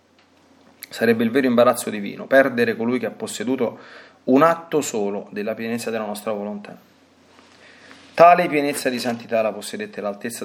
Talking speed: 145 wpm